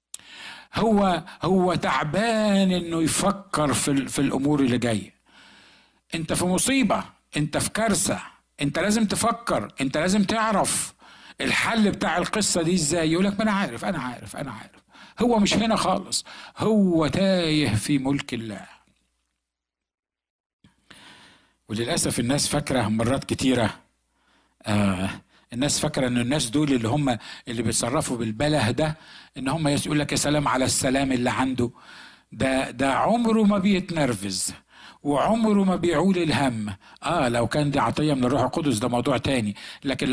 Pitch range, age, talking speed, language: 125-175 Hz, 60-79, 135 wpm, Arabic